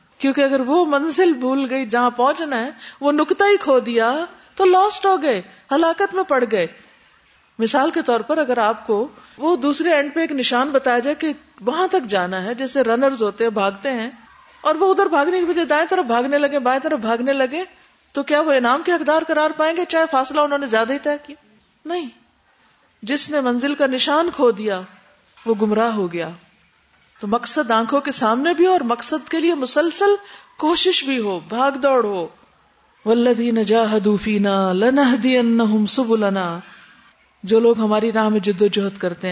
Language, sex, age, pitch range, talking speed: Urdu, female, 40-59, 220-305 Hz, 180 wpm